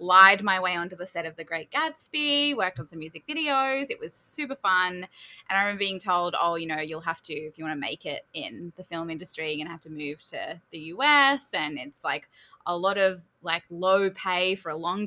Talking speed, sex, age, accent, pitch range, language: 245 wpm, female, 10-29, Australian, 165-195 Hz, English